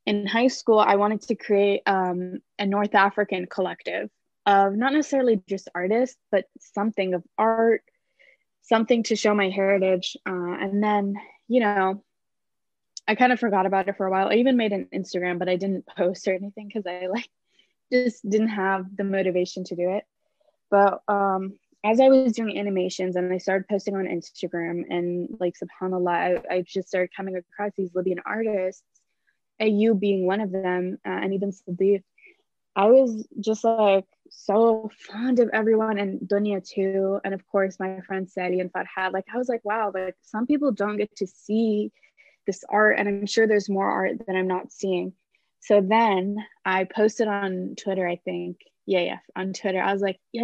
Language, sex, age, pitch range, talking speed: English, female, 20-39, 185-220 Hz, 185 wpm